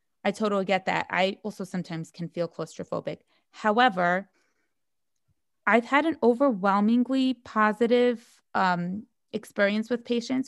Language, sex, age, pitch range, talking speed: English, female, 20-39, 170-225 Hz, 115 wpm